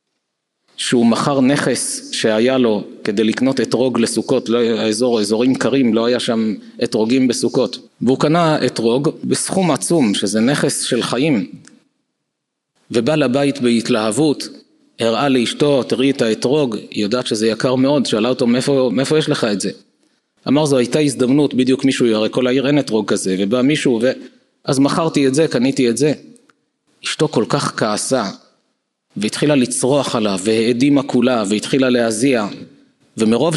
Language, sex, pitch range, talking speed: Hebrew, male, 115-150 Hz, 145 wpm